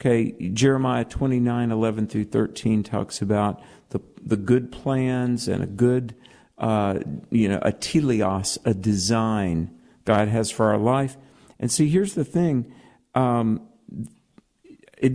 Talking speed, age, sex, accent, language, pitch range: 135 wpm, 50-69, male, American, English, 110-135 Hz